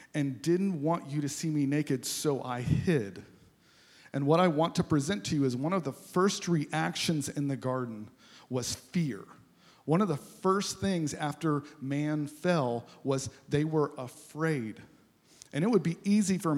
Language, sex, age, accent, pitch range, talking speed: English, male, 40-59, American, 140-170 Hz, 175 wpm